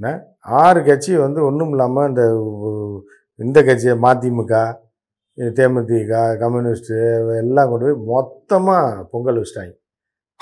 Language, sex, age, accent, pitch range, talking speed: Tamil, male, 50-69, native, 120-160 Hz, 90 wpm